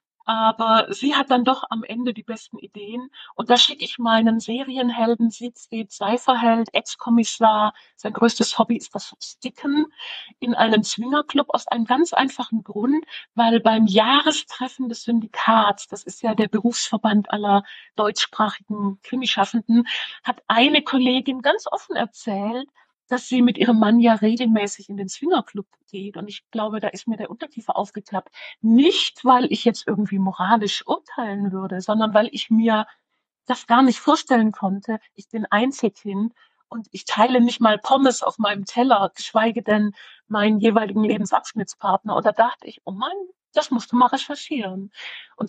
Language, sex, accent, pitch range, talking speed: German, female, German, 210-250 Hz, 155 wpm